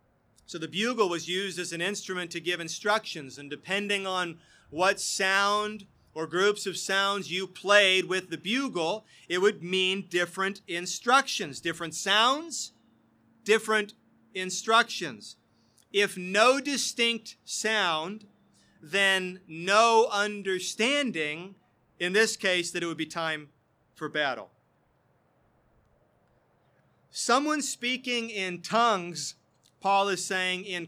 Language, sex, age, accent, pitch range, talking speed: English, male, 40-59, American, 175-220 Hz, 115 wpm